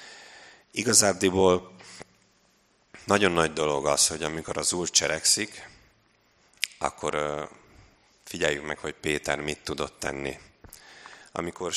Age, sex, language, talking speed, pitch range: 30-49, male, Hungarian, 95 wpm, 75-85 Hz